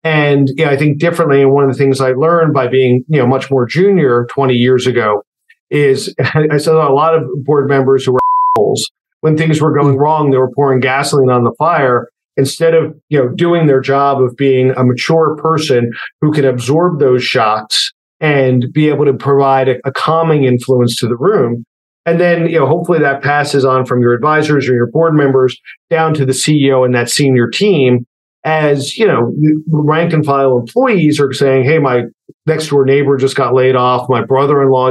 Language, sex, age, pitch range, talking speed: English, male, 50-69, 130-150 Hz, 205 wpm